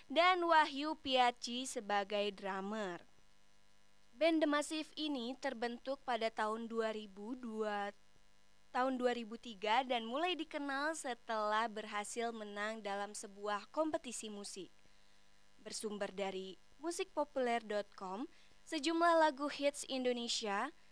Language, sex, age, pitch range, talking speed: Indonesian, female, 20-39, 220-305 Hz, 90 wpm